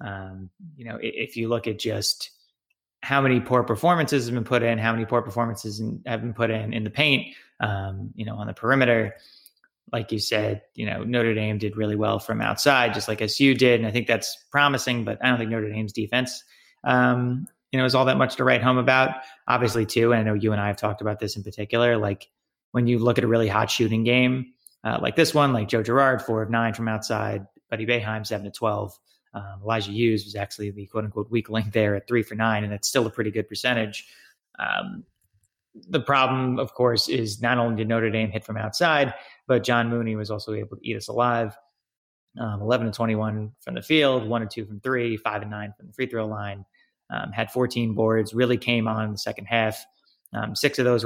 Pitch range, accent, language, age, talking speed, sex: 105-125 Hz, American, English, 30-49, 230 wpm, male